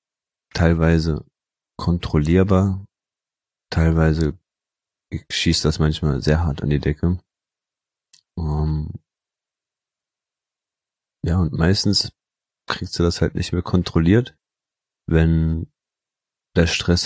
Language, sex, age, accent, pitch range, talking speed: German, male, 30-49, German, 80-85 Hz, 90 wpm